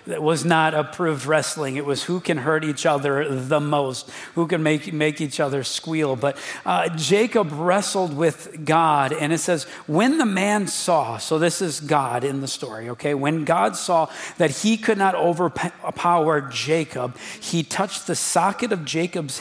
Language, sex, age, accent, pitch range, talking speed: English, male, 40-59, American, 145-175 Hz, 175 wpm